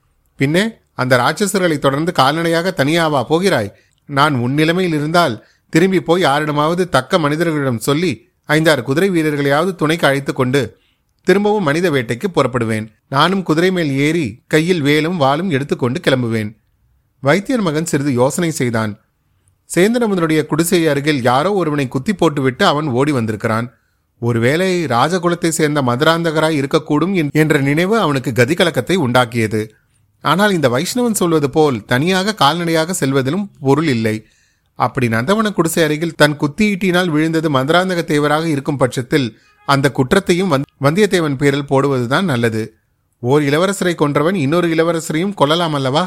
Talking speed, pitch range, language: 120 wpm, 130-170 Hz, Tamil